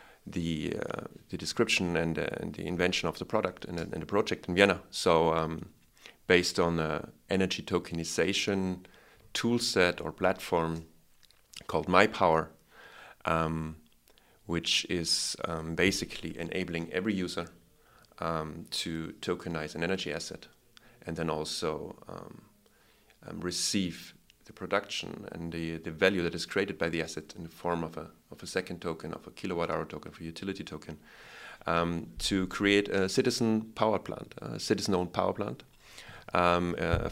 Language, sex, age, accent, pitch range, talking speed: English, male, 30-49, German, 80-95 Hz, 145 wpm